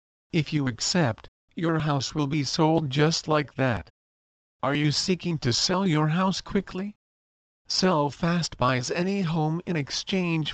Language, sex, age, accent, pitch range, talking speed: English, male, 50-69, American, 130-165 Hz, 140 wpm